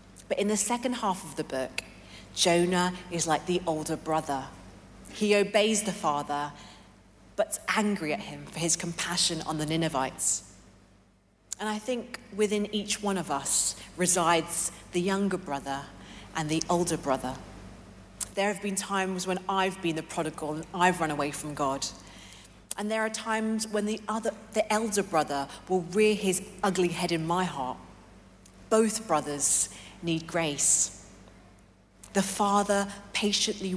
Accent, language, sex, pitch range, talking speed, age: British, English, female, 125-195 Hz, 150 wpm, 40-59